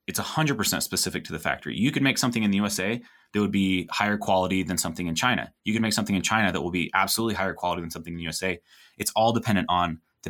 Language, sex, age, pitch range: English, male, 20-39, 85-105 Hz